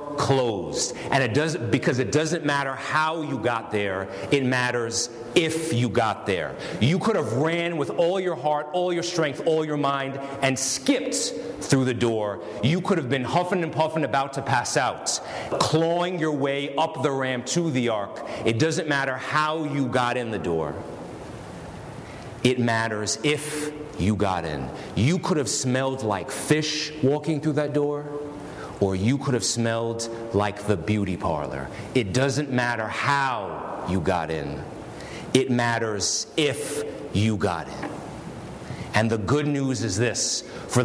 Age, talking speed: 40-59, 165 wpm